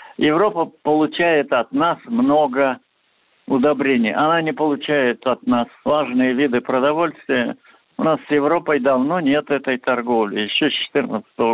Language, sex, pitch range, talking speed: Russian, male, 125-165 Hz, 130 wpm